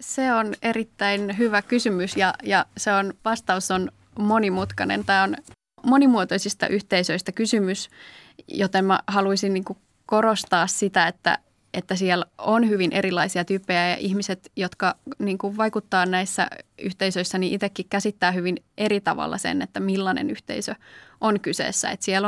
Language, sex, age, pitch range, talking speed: Finnish, female, 20-39, 190-215 Hz, 135 wpm